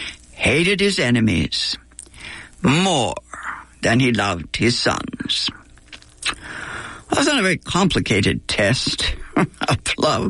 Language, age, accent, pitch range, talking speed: English, 60-79, American, 110-175 Hz, 100 wpm